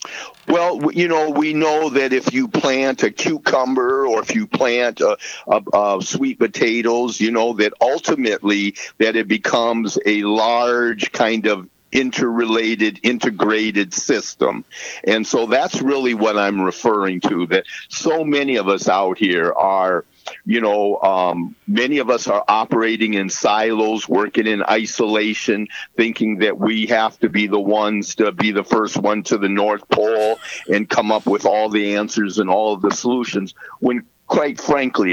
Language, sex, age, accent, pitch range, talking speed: English, male, 50-69, American, 100-120 Hz, 155 wpm